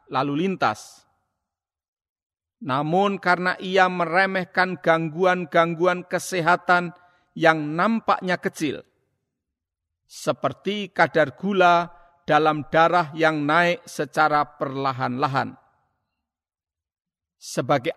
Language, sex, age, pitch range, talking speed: Indonesian, male, 50-69, 135-180 Hz, 70 wpm